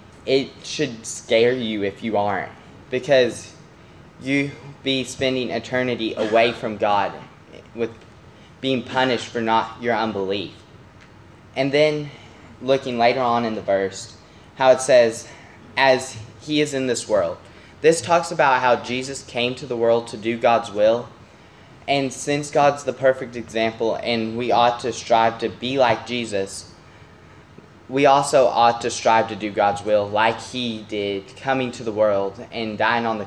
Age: 10-29